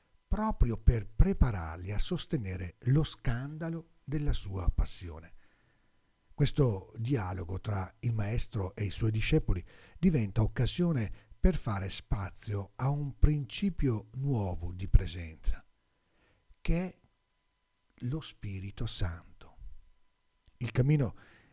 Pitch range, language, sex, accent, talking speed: 95-135 Hz, Italian, male, native, 105 wpm